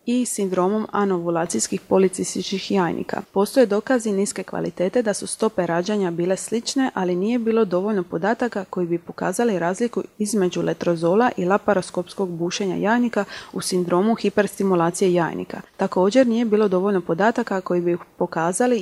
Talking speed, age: 135 wpm, 30-49